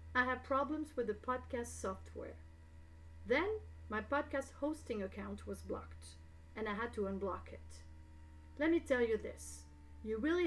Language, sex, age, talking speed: English, female, 40-59, 155 wpm